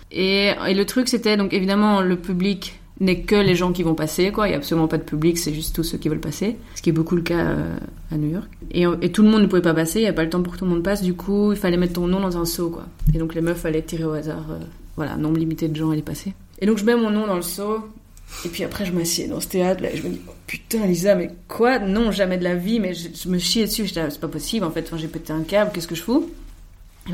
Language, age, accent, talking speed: French, 30-49, French, 320 wpm